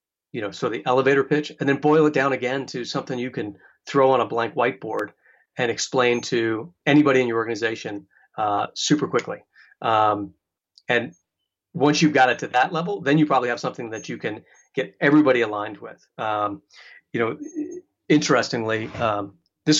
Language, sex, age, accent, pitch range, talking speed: English, male, 40-59, American, 110-140 Hz, 175 wpm